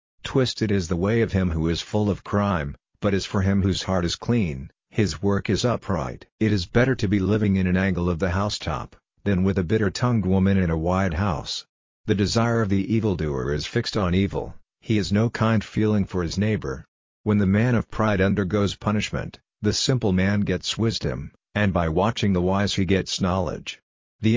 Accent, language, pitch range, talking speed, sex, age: American, English, 90-105 Hz, 200 wpm, male, 50-69